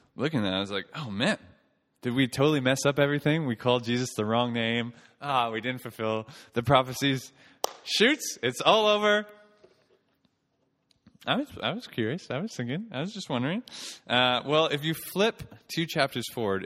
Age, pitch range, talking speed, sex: 20-39, 110-140 Hz, 185 wpm, male